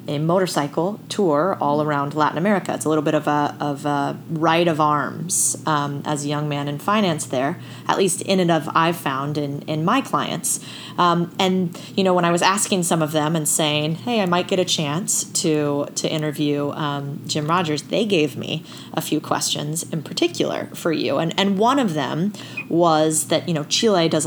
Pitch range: 150-185 Hz